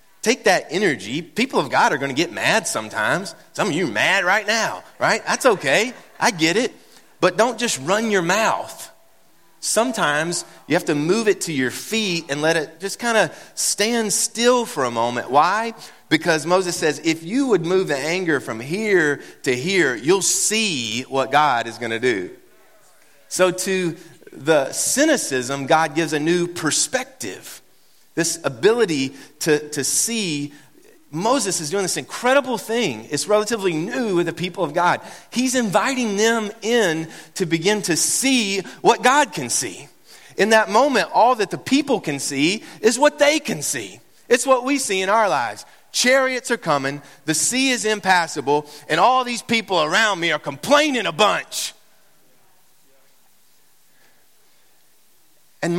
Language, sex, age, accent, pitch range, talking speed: English, male, 30-49, American, 160-235 Hz, 160 wpm